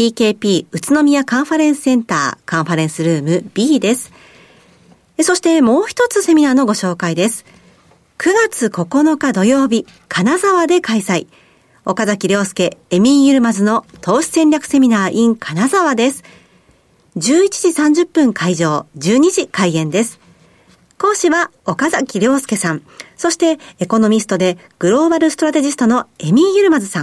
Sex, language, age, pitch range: female, Japanese, 50-69, 190-290 Hz